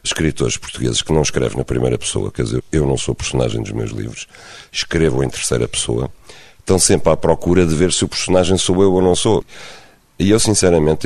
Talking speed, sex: 205 wpm, male